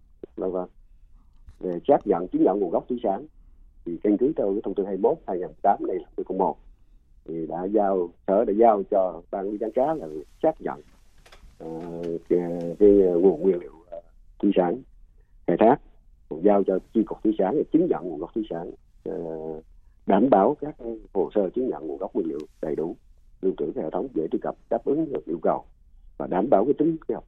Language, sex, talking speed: Vietnamese, male, 200 wpm